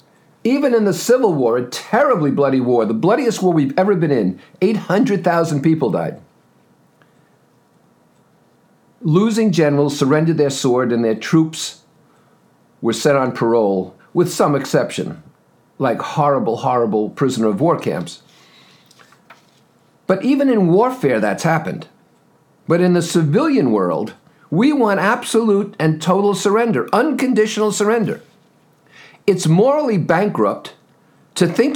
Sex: male